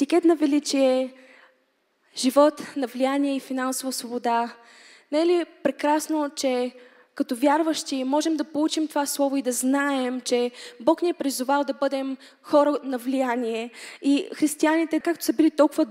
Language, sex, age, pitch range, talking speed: Bulgarian, female, 20-39, 260-305 Hz, 145 wpm